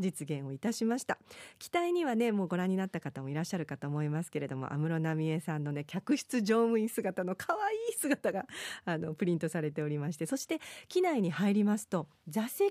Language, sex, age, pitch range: Japanese, female, 40-59, 155-245 Hz